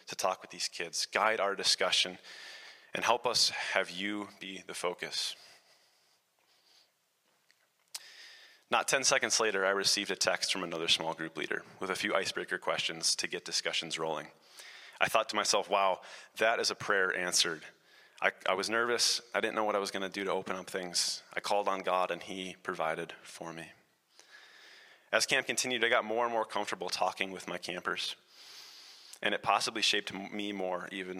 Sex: male